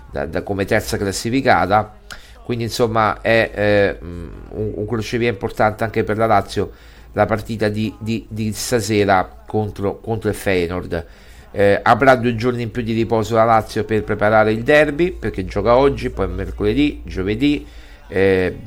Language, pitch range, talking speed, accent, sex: Italian, 100-120 Hz, 155 wpm, native, male